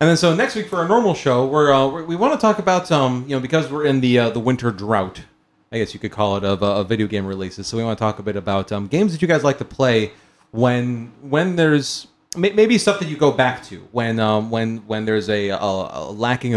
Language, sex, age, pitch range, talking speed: English, male, 30-49, 110-175 Hz, 270 wpm